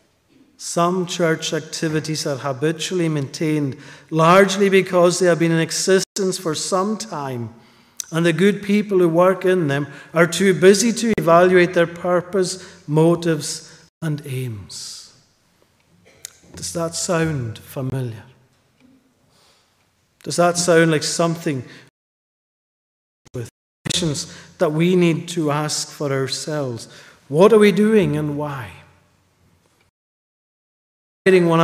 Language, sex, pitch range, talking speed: English, male, 145-180 Hz, 110 wpm